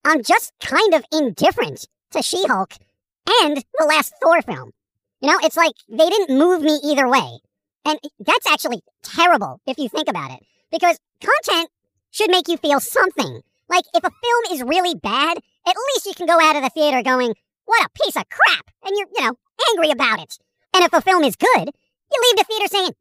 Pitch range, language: 290-375 Hz, English